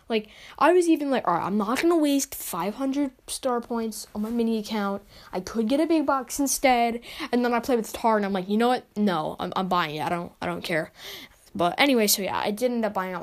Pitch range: 190-250 Hz